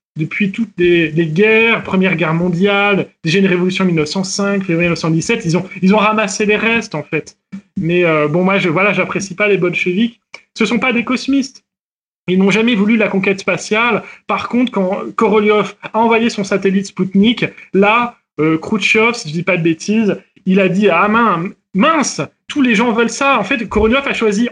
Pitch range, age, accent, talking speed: 190-230 Hz, 30-49, French, 195 wpm